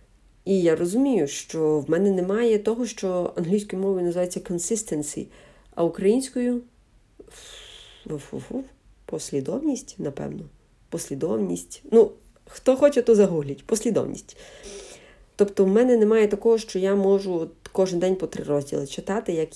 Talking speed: 125 wpm